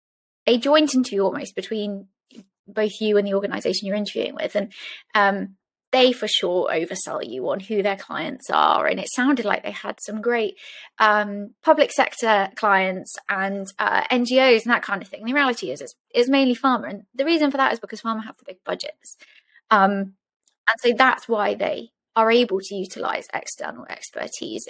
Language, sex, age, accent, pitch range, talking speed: English, female, 20-39, British, 205-265 Hz, 185 wpm